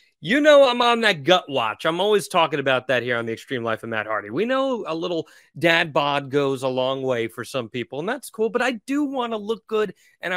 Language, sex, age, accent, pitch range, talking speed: English, male, 30-49, American, 135-180 Hz, 255 wpm